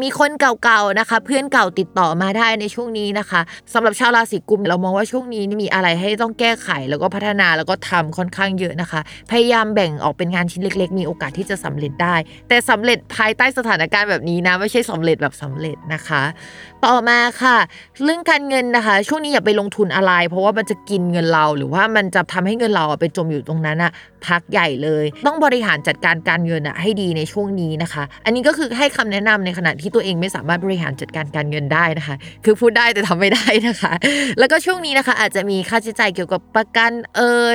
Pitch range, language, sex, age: 175-230 Hz, Thai, female, 20-39